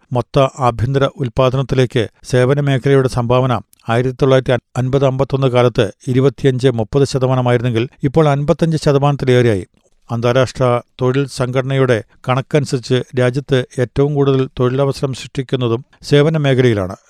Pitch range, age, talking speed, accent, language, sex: 125-145 Hz, 50-69, 95 wpm, native, Malayalam, male